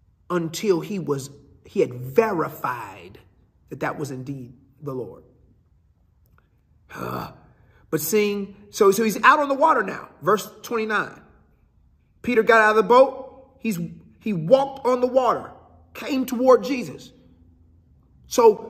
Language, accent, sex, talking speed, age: English, American, male, 130 wpm, 40-59